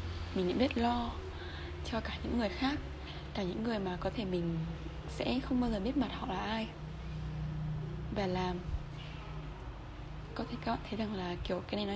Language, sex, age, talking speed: Vietnamese, female, 20-39, 185 wpm